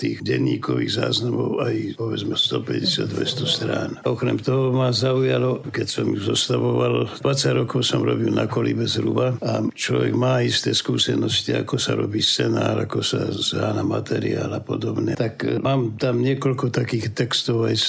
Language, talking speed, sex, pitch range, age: Slovak, 150 wpm, male, 110-130 Hz, 60-79